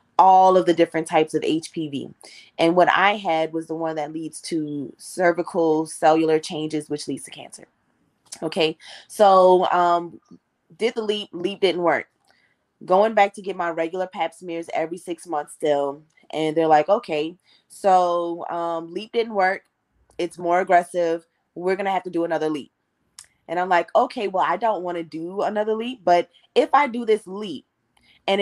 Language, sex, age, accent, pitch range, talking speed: English, female, 20-39, American, 165-200 Hz, 175 wpm